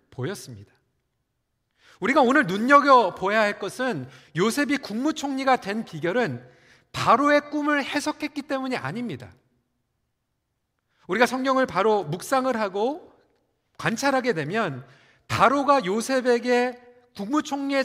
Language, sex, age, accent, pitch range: Korean, male, 40-59, native, 170-265 Hz